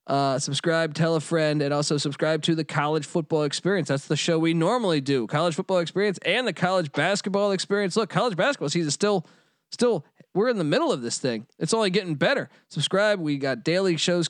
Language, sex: English, male